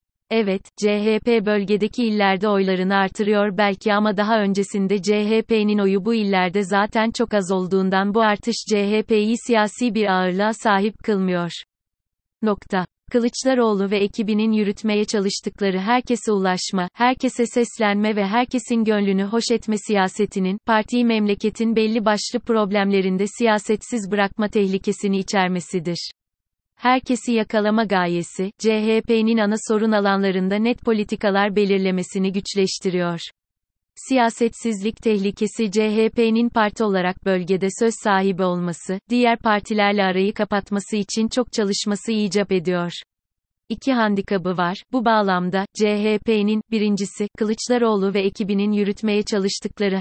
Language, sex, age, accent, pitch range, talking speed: Turkish, female, 30-49, native, 195-225 Hz, 110 wpm